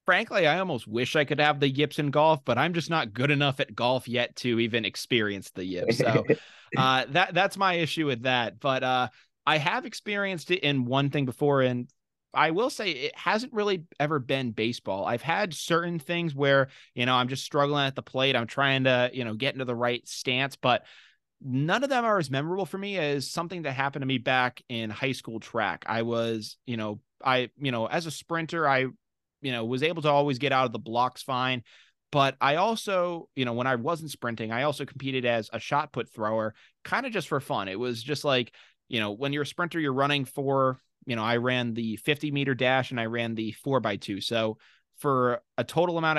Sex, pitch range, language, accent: male, 120-150 Hz, English, American